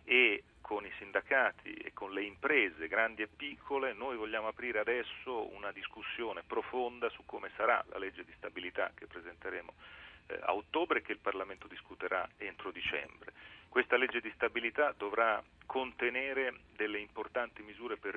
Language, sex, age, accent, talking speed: Italian, male, 40-59, native, 150 wpm